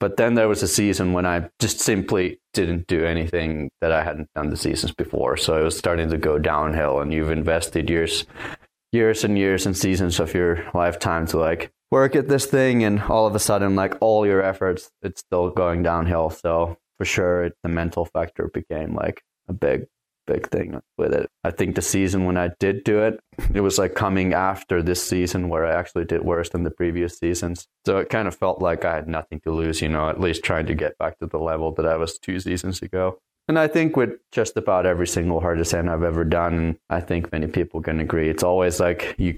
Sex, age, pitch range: male, 20-39, 85-100 Hz